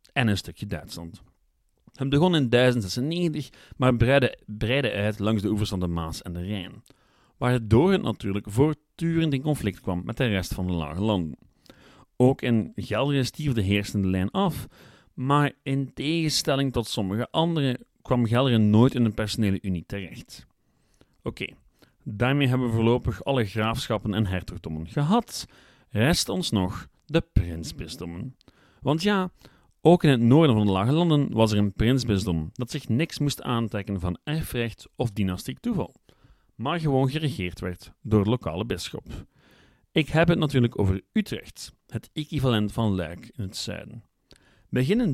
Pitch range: 105-140 Hz